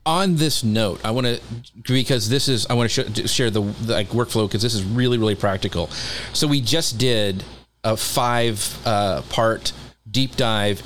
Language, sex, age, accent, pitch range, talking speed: English, male, 40-59, American, 110-135 Hz, 190 wpm